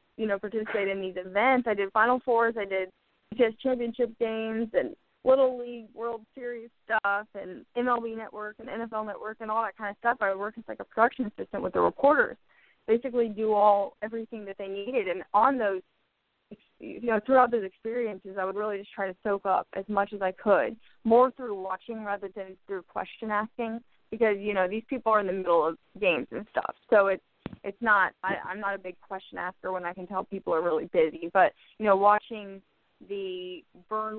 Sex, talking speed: female, 205 wpm